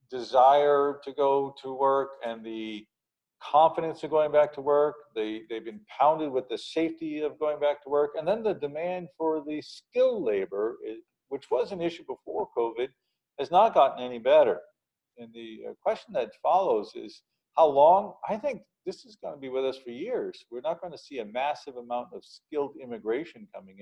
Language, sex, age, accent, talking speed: English, male, 50-69, American, 185 wpm